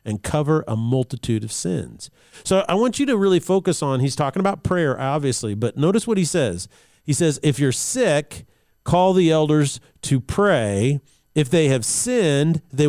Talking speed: 180 wpm